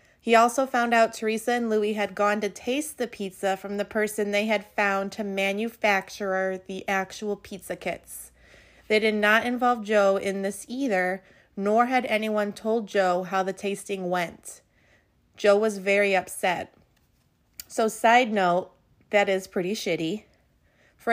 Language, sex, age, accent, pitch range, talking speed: English, female, 30-49, American, 190-220 Hz, 155 wpm